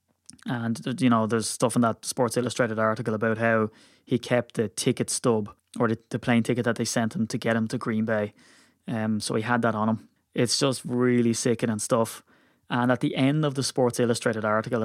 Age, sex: 20-39, male